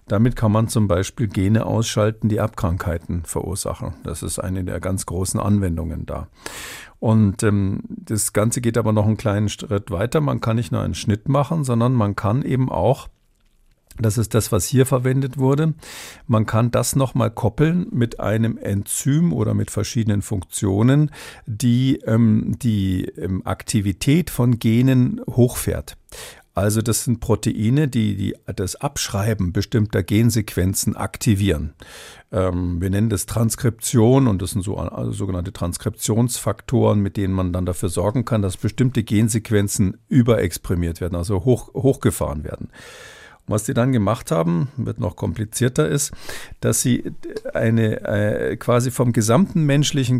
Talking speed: 145 wpm